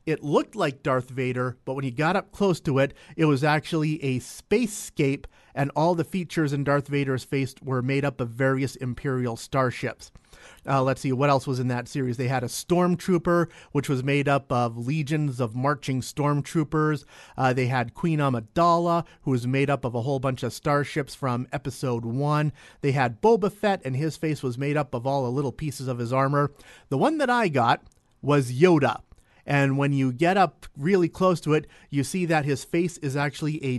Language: English